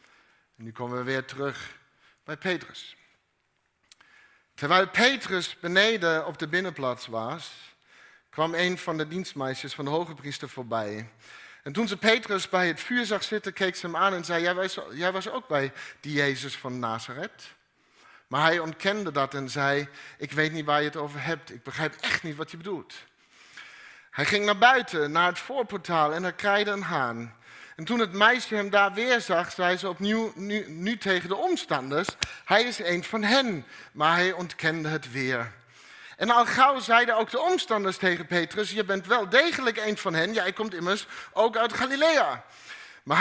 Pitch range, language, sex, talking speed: 145-210 Hz, Dutch, male, 185 wpm